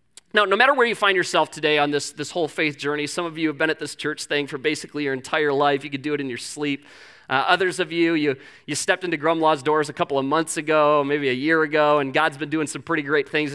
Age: 30-49